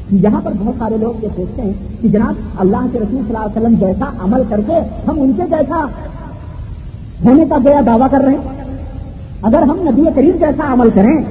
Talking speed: 200 wpm